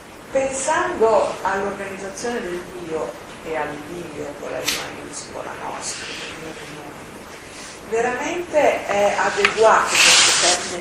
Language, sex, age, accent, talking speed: Italian, female, 40-59, native, 90 wpm